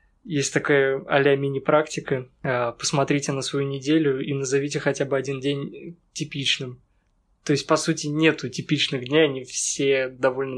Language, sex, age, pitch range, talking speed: Russian, male, 20-39, 130-145 Hz, 140 wpm